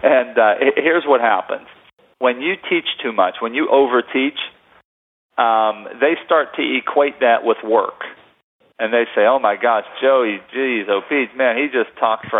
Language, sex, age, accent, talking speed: English, male, 40-59, American, 160 wpm